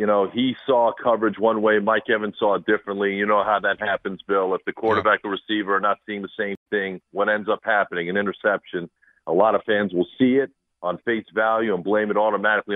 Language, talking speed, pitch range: English, 230 wpm, 100-130 Hz